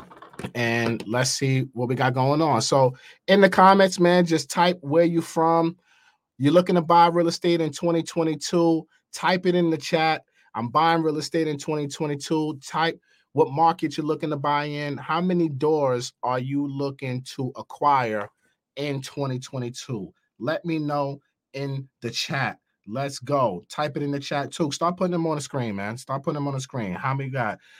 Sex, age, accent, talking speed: male, 30-49, American, 185 wpm